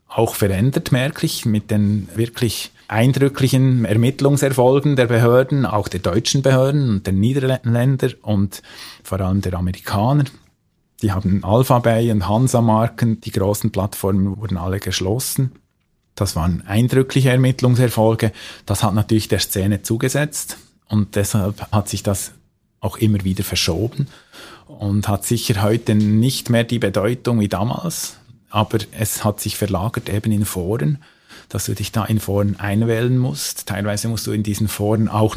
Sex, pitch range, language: male, 105-125 Hz, German